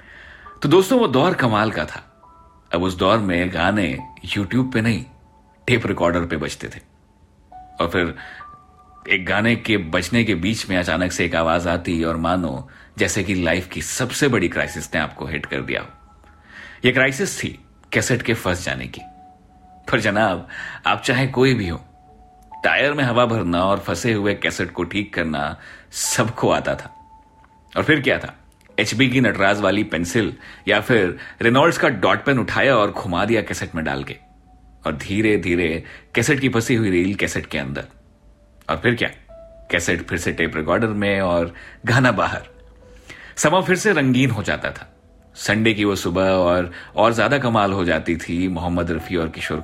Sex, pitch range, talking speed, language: male, 85-120 Hz, 175 wpm, Hindi